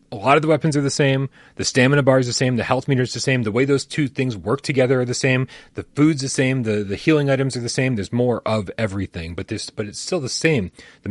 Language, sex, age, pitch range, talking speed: English, male, 30-49, 105-140 Hz, 285 wpm